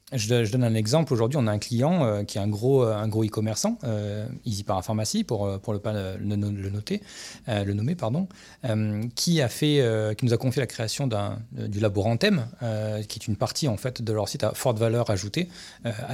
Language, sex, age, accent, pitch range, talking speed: French, male, 30-49, French, 105-130 Hz, 240 wpm